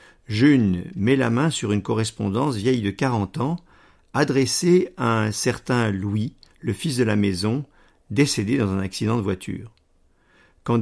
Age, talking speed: 50-69, 155 wpm